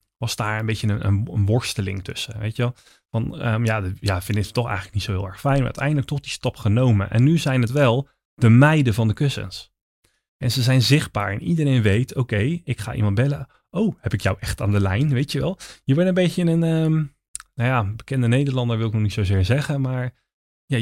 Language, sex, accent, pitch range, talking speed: Dutch, male, Dutch, 105-135 Hz, 235 wpm